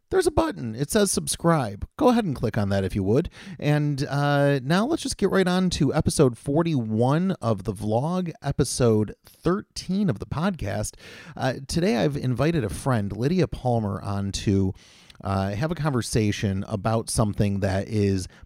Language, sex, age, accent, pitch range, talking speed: English, male, 30-49, American, 105-155 Hz, 170 wpm